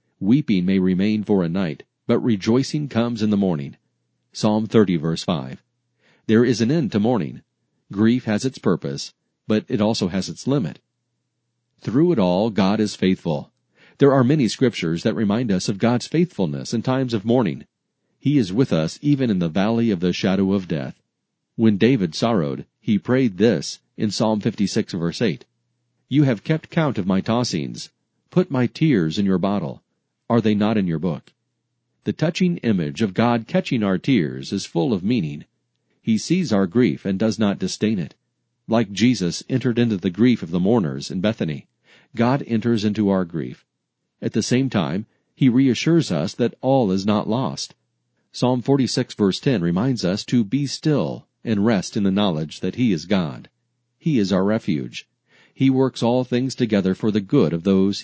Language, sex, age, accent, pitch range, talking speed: English, male, 40-59, American, 95-125 Hz, 180 wpm